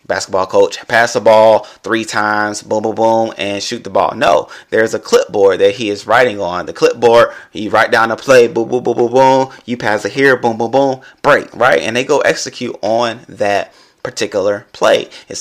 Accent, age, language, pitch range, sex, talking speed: American, 30-49, English, 105-125 Hz, male, 205 wpm